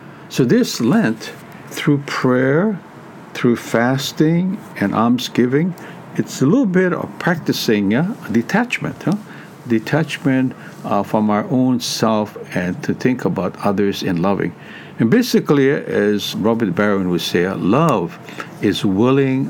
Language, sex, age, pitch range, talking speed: English, male, 60-79, 105-150 Hz, 120 wpm